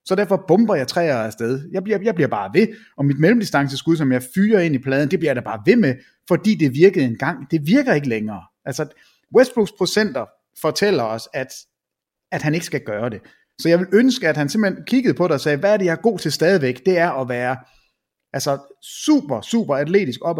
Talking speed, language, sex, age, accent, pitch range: 225 wpm, English, male, 30-49, Danish, 135-190 Hz